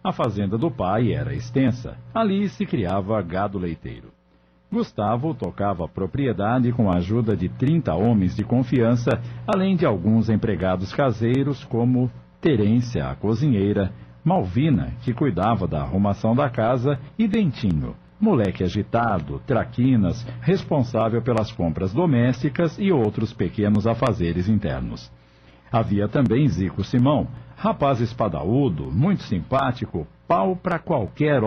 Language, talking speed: Portuguese, 120 wpm